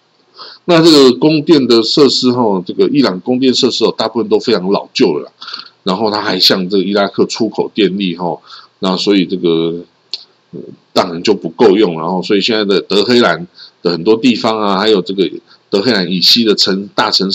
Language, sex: Chinese, male